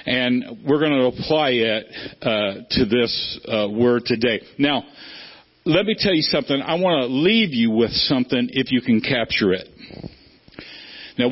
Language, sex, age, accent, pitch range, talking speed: English, male, 50-69, American, 135-185 Hz, 165 wpm